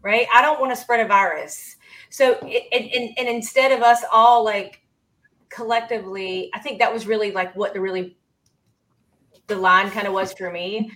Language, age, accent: English, 30-49, American